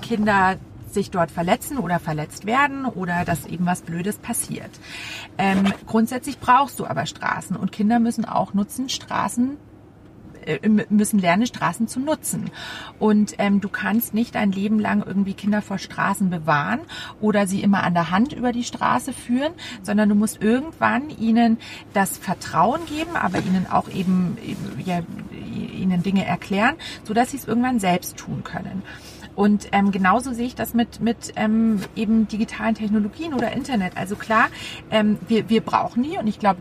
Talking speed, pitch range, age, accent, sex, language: 165 wpm, 190-235 Hz, 40-59, German, female, German